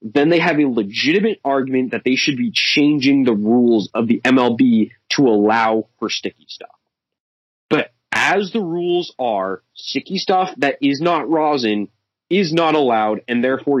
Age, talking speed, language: 20-39, 160 wpm, English